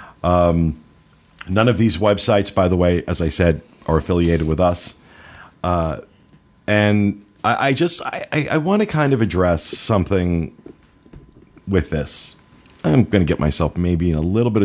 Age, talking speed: 50-69, 160 wpm